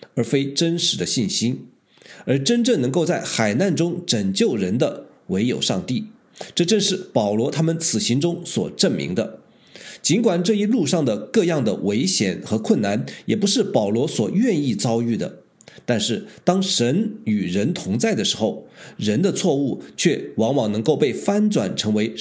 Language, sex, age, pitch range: Chinese, male, 50-69, 140-210 Hz